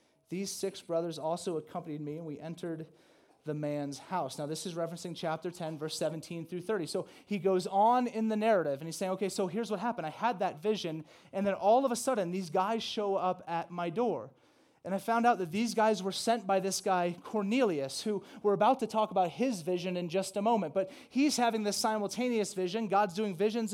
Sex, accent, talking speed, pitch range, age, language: male, American, 220 wpm, 165-210 Hz, 30-49, English